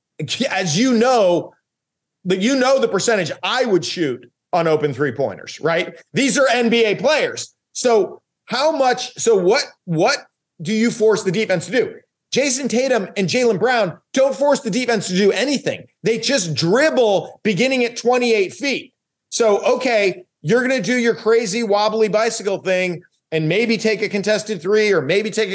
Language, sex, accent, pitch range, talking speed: English, male, American, 175-235 Hz, 165 wpm